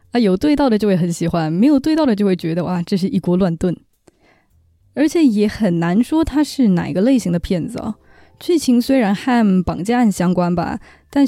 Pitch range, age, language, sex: 180-265 Hz, 10-29, Chinese, female